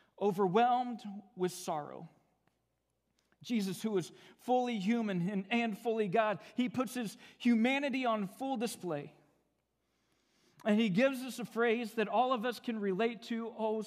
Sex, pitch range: male, 195-250 Hz